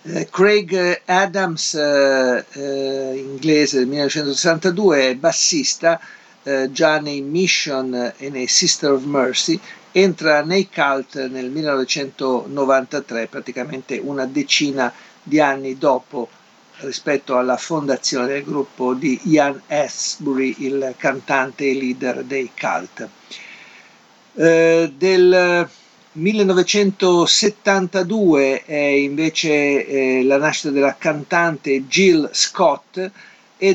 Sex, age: male, 50-69